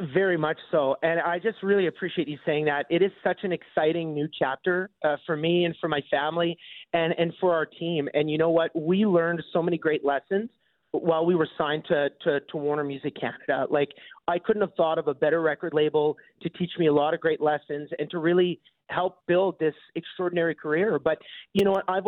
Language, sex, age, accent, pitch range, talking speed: English, male, 30-49, American, 150-180 Hz, 220 wpm